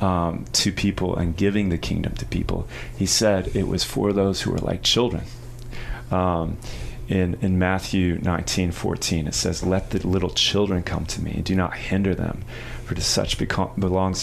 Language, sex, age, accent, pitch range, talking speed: English, male, 30-49, American, 90-120 Hz, 185 wpm